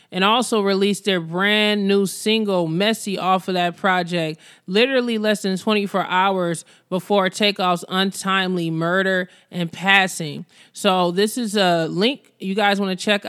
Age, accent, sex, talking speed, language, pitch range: 20-39, American, male, 150 wpm, English, 175-205 Hz